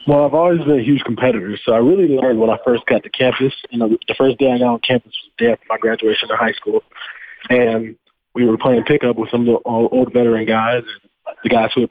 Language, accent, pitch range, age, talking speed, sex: English, American, 115-130 Hz, 20-39, 260 wpm, male